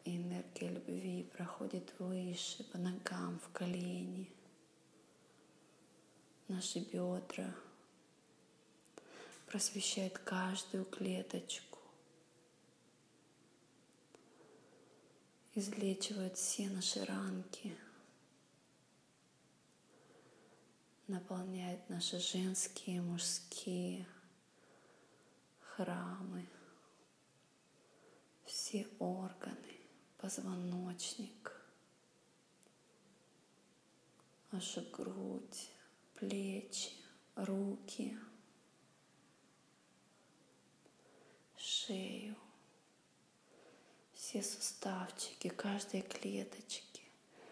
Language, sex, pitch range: Russian, female, 175-200 Hz